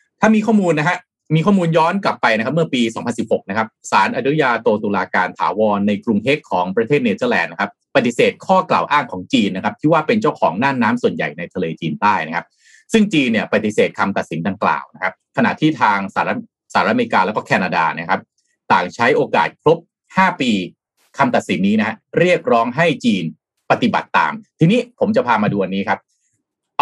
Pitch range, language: 140-230 Hz, Thai